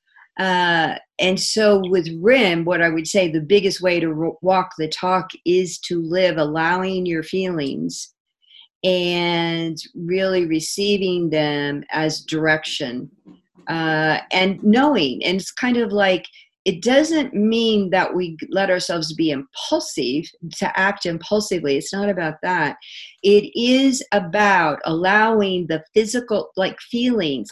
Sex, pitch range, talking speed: female, 165-205 Hz, 130 wpm